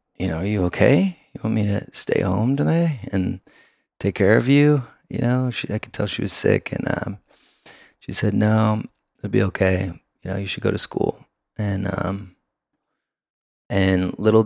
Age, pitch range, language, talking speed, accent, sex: 20-39, 90-105 Hz, English, 185 wpm, American, male